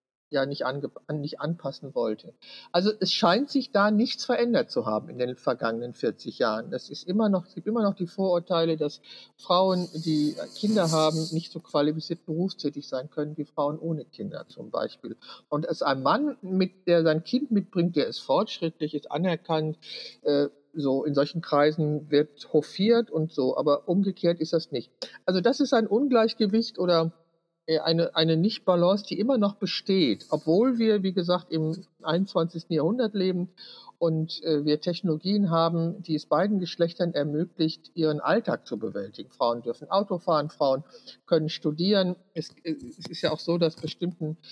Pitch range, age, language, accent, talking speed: 150-190 Hz, 50-69, German, German, 170 wpm